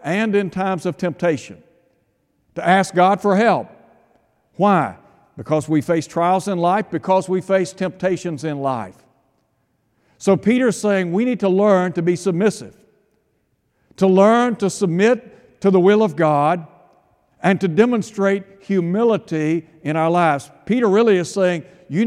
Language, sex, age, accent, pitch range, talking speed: English, male, 60-79, American, 155-200 Hz, 145 wpm